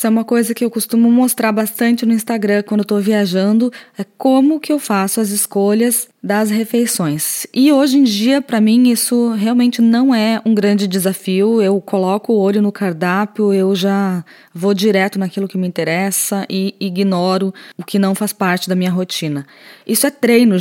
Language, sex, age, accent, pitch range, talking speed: Portuguese, female, 20-39, Brazilian, 195-235 Hz, 185 wpm